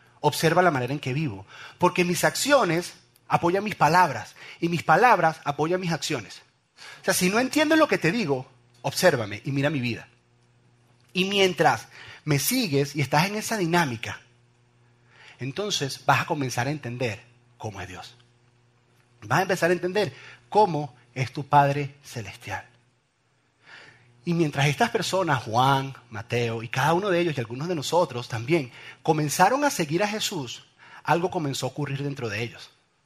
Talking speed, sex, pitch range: 160 wpm, male, 120-175 Hz